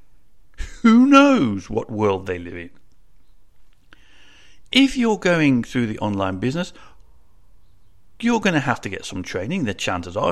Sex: male